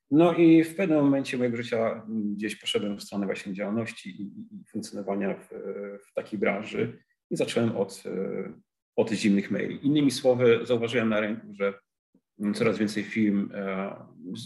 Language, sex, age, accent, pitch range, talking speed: Polish, male, 40-59, native, 105-130 Hz, 145 wpm